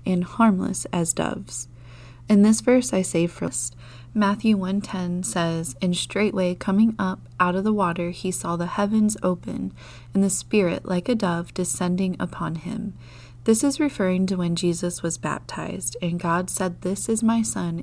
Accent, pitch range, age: American, 165-205 Hz, 30-49